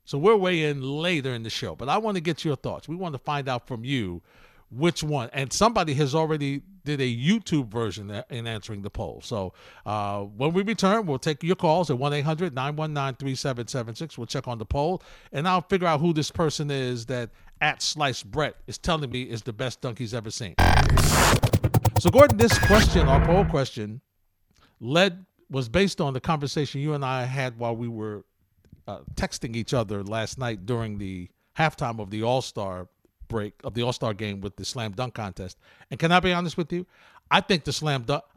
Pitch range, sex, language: 115-160 Hz, male, English